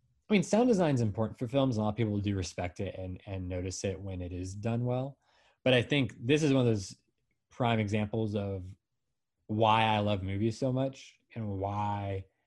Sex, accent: male, American